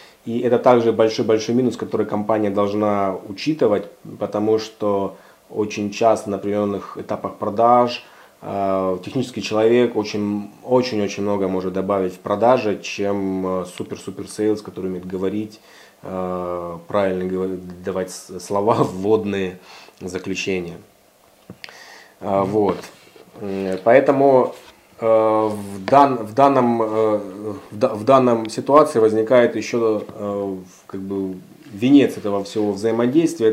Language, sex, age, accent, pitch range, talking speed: Russian, male, 30-49, native, 95-115 Hz, 100 wpm